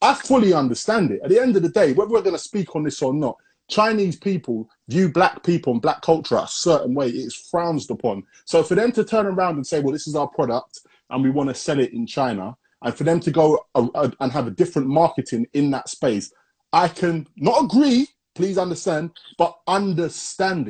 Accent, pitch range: British, 135-190 Hz